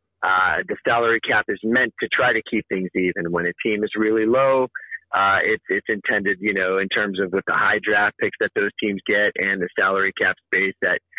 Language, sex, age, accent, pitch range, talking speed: English, male, 30-49, American, 100-115 Hz, 225 wpm